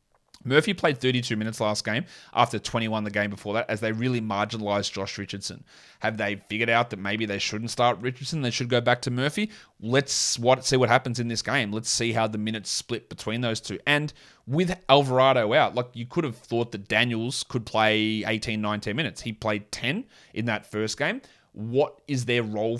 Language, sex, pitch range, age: English, male, 105-130 Hz, 20-39